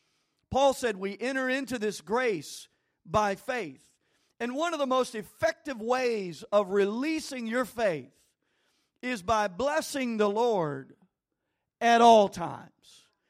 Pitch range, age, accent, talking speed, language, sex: 205-265 Hz, 50-69, American, 125 wpm, English, male